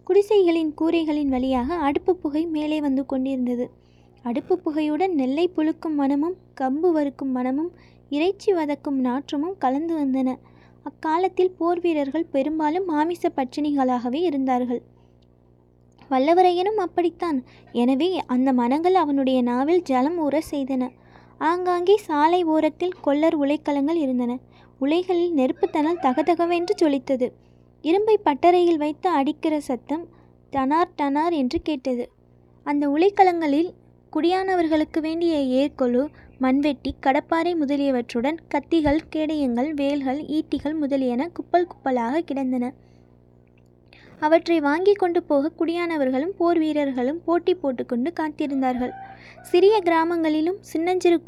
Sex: female